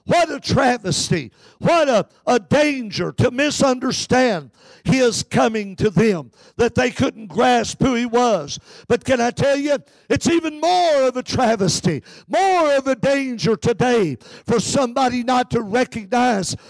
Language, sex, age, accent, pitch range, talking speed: English, male, 50-69, American, 240-295 Hz, 145 wpm